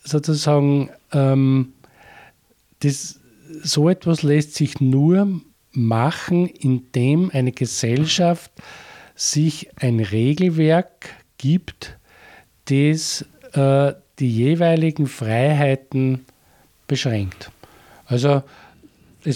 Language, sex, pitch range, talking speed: German, male, 125-155 Hz, 75 wpm